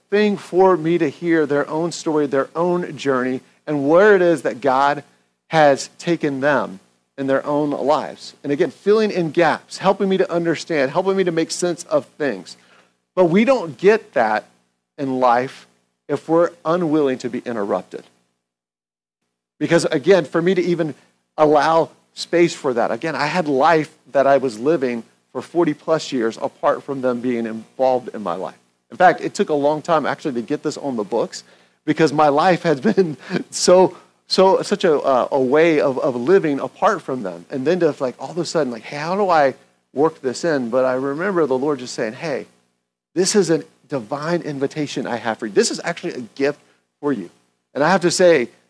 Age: 50-69